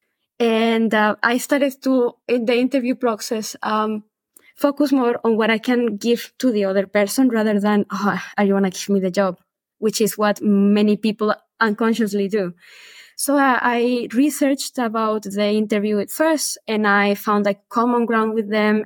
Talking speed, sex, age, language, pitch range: 180 wpm, female, 20-39, English, 215-260 Hz